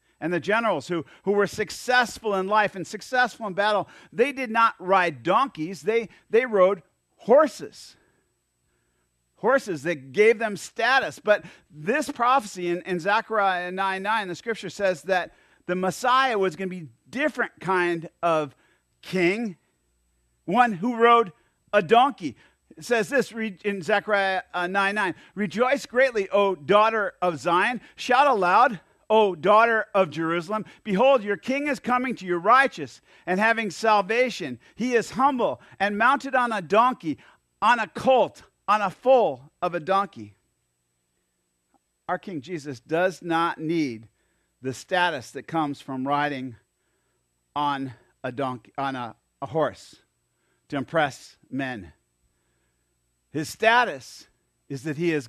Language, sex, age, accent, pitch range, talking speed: English, male, 50-69, American, 135-220 Hz, 140 wpm